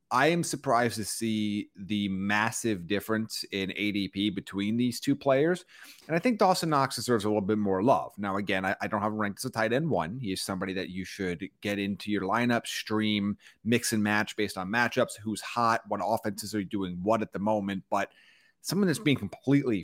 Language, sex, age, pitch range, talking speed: English, male, 30-49, 100-120 Hz, 210 wpm